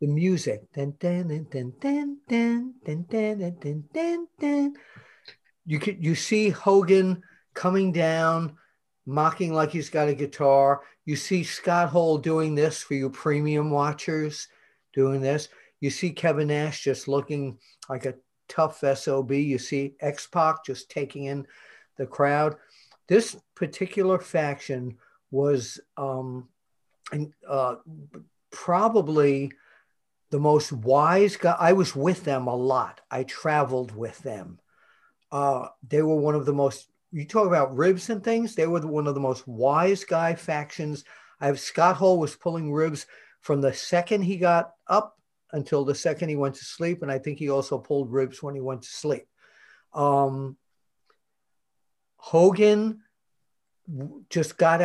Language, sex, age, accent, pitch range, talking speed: English, male, 50-69, American, 140-170 Hz, 140 wpm